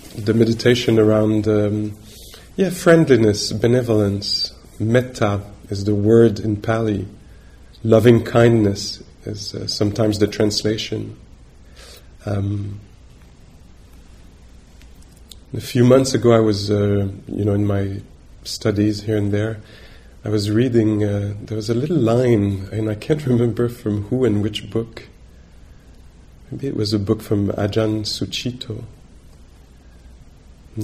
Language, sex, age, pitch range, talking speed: English, male, 30-49, 90-110 Hz, 125 wpm